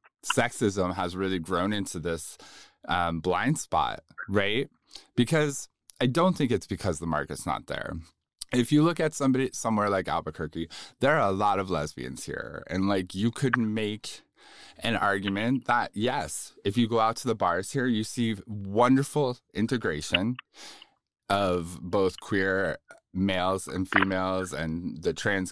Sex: male